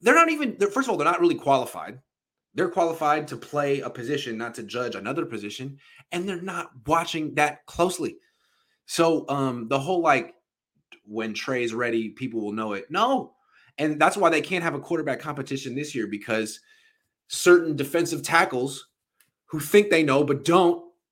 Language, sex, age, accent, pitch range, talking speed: English, male, 30-49, American, 120-170 Hz, 180 wpm